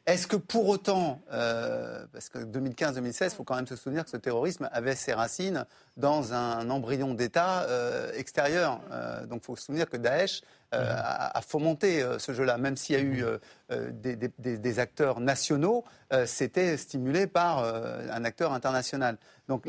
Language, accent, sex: French, French, male